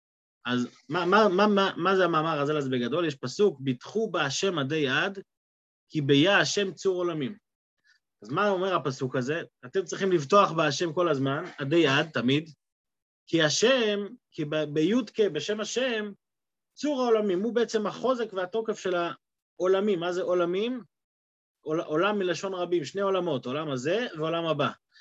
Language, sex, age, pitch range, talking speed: Hebrew, male, 30-49, 155-210 Hz, 150 wpm